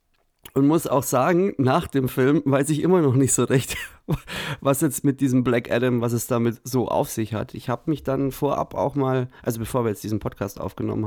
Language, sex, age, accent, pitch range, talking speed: German, male, 30-49, German, 120-155 Hz, 220 wpm